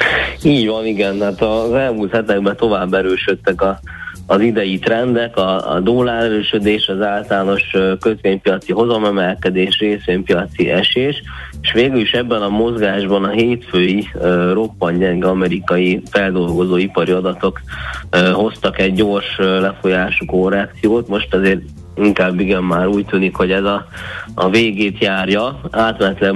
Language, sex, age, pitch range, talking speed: Hungarian, male, 20-39, 95-105 Hz, 120 wpm